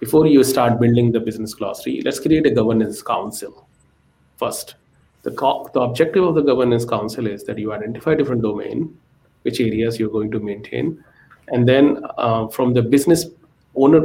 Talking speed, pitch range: 170 wpm, 115-140 Hz